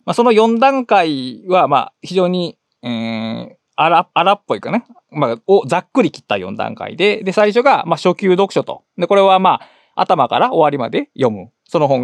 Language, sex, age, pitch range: Japanese, male, 20-39, 150-235 Hz